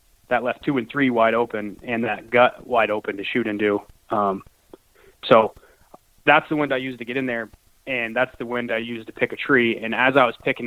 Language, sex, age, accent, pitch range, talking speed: English, male, 20-39, American, 110-130 Hz, 235 wpm